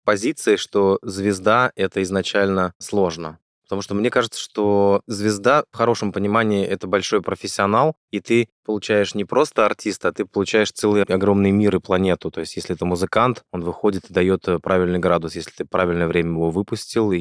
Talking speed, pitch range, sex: 170 wpm, 85-105 Hz, male